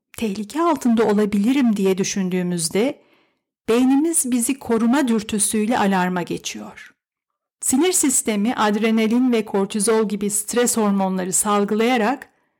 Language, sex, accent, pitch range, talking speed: Turkish, female, native, 210-270 Hz, 95 wpm